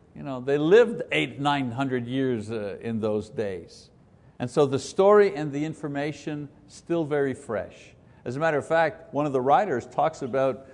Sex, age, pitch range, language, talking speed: male, 60-79, 135-180 Hz, English, 170 wpm